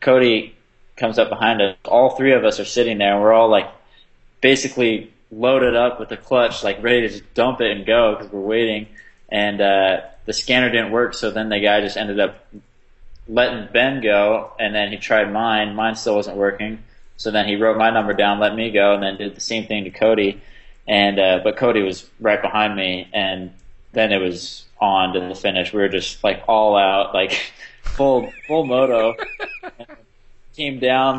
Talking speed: 200 wpm